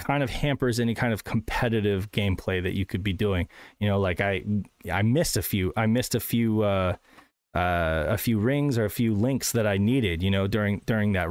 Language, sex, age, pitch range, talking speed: English, male, 30-49, 105-135 Hz, 225 wpm